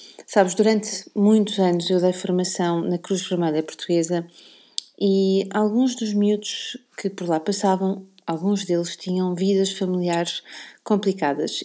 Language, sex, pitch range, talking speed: Portuguese, female, 180-210 Hz, 130 wpm